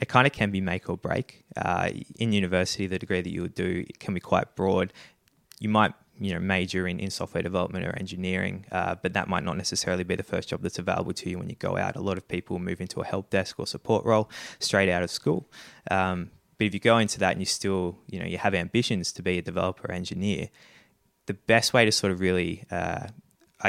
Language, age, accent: English, 20-39, Australian